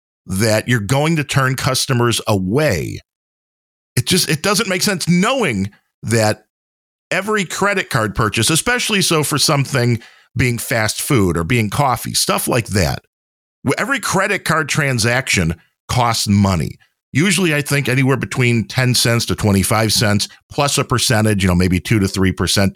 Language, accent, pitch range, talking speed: English, American, 105-160 Hz, 150 wpm